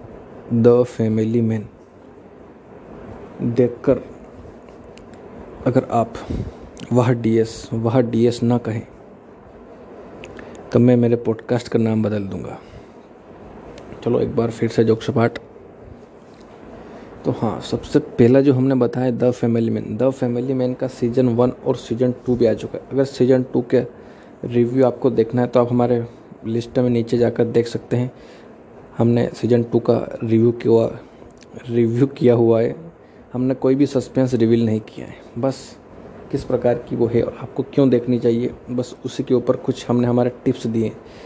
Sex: male